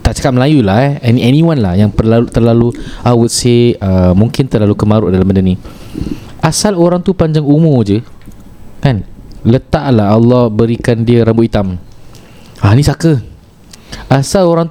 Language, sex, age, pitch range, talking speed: Malay, male, 20-39, 110-145 Hz, 145 wpm